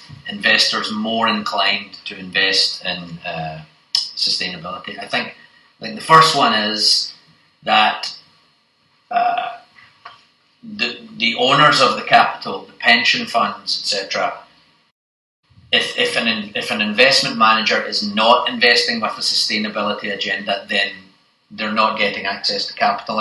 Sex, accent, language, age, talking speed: male, British, English, 30-49, 125 wpm